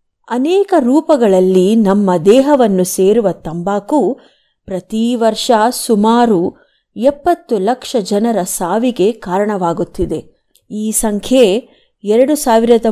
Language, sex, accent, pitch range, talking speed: Kannada, female, native, 200-270 Hz, 85 wpm